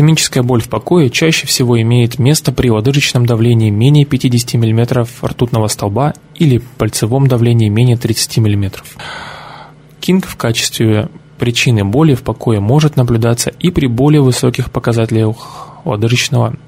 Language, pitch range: Russian, 115-140 Hz